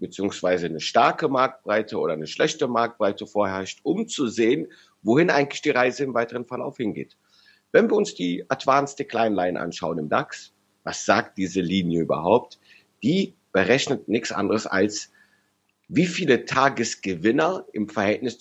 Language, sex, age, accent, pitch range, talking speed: German, male, 50-69, German, 100-130 Hz, 145 wpm